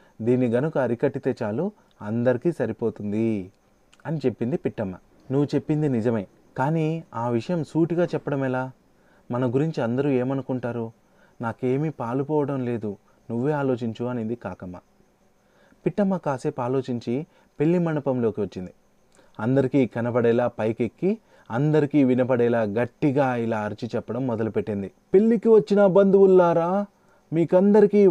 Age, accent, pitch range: 30-49, native, 125-180 Hz